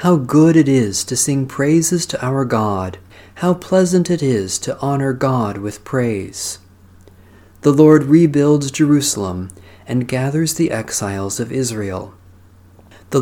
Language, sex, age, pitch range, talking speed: English, male, 40-59, 100-140 Hz, 135 wpm